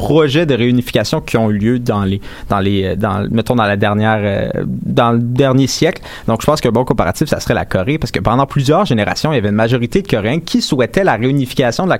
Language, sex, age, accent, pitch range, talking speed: French, male, 30-49, Canadian, 110-155 Hz, 245 wpm